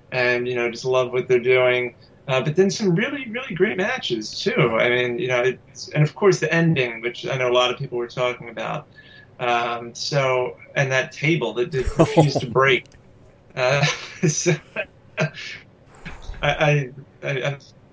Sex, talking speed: male, 175 wpm